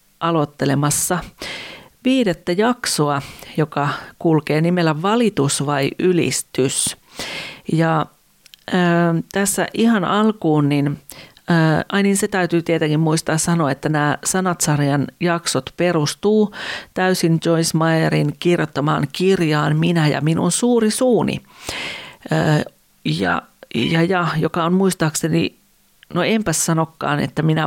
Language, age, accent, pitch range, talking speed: Finnish, 40-59, native, 150-185 Hz, 95 wpm